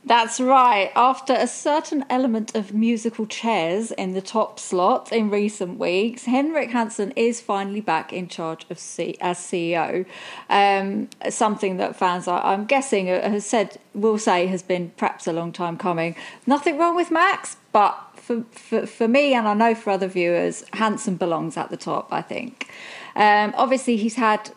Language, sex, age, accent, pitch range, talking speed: English, female, 40-59, British, 180-225 Hz, 175 wpm